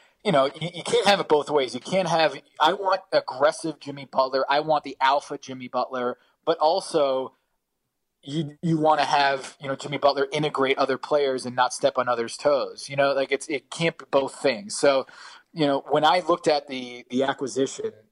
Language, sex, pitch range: English, male, 125-150 Hz